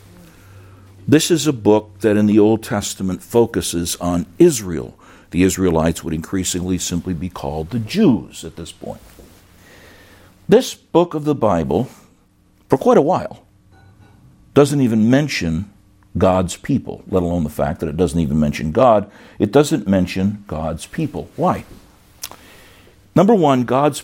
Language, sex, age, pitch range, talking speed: English, male, 60-79, 90-115 Hz, 140 wpm